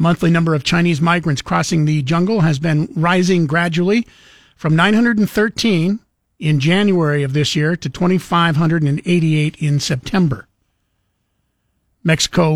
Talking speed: 115 wpm